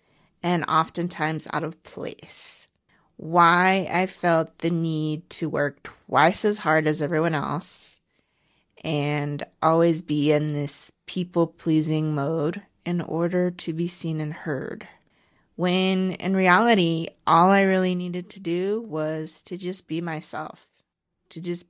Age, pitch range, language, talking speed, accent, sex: 30-49, 155-185 Hz, English, 135 wpm, American, female